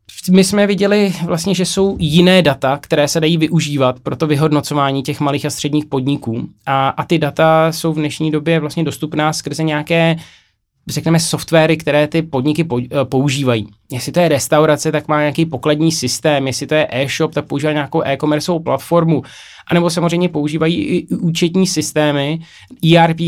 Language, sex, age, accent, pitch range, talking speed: Czech, male, 20-39, native, 145-165 Hz, 165 wpm